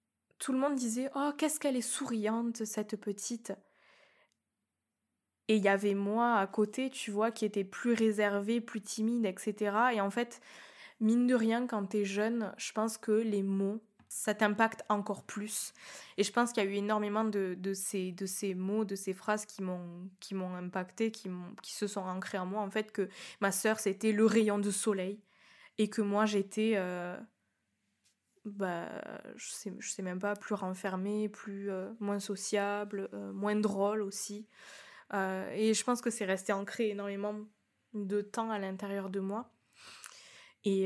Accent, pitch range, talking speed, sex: French, 195-220 Hz, 185 wpm, female